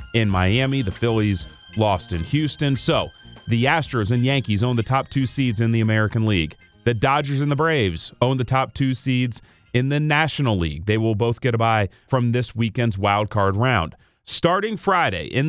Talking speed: 195 wpm